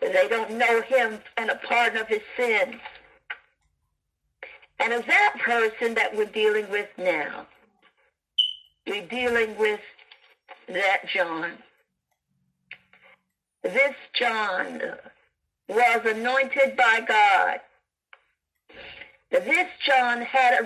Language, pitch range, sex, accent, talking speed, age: English, 210-275 Hz, female, American, 100 wpm, 60-79